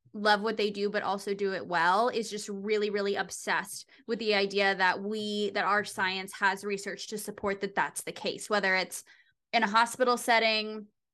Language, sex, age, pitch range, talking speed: English, female, 20-39, 195-225 Hz, 195 wpm